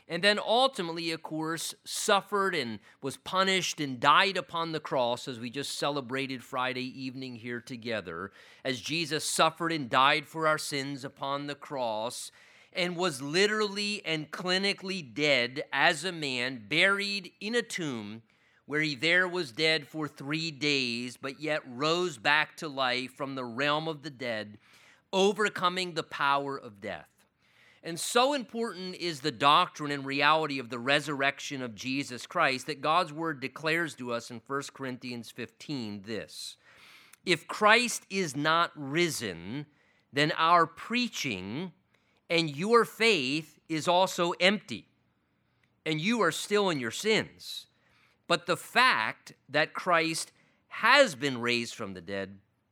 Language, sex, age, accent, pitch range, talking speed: English, male, 30-49, American, 130-180 Hz, 145 wpm